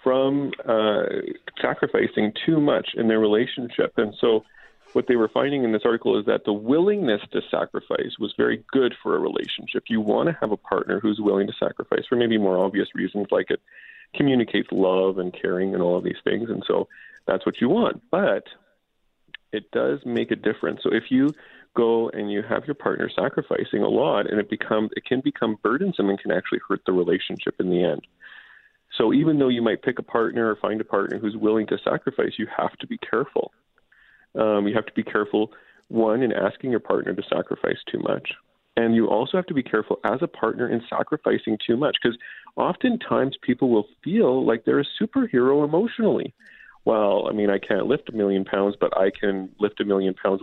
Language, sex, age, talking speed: English, male, 40-59, 205 wpm